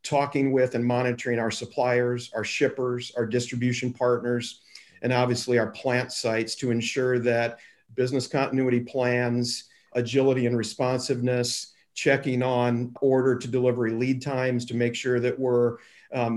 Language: English